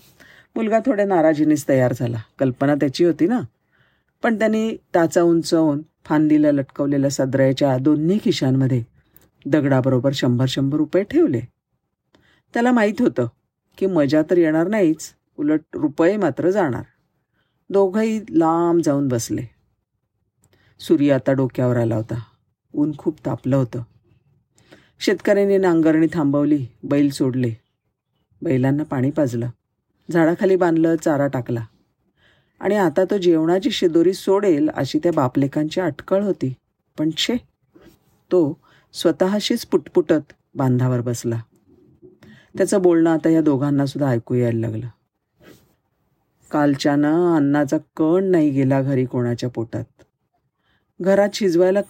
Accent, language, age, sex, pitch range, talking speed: native, Marathi, 50-69, female, 130-180 Hz, 110 wpm